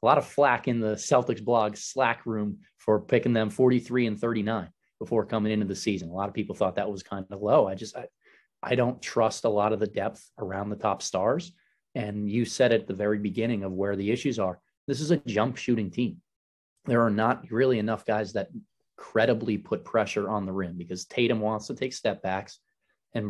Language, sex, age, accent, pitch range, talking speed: English, male, 20-39, American, 100-115 Hz, 220 wpm